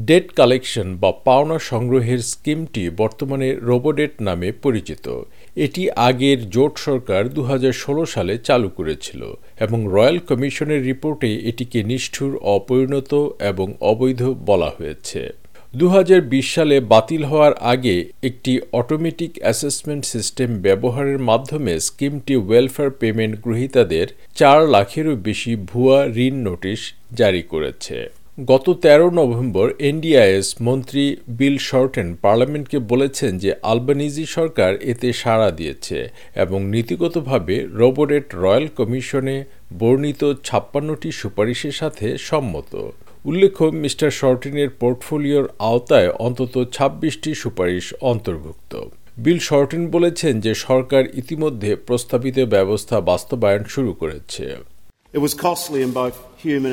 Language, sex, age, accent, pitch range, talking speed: Bengali, male, 50-69, native, 115-145 Hz, 100 wpm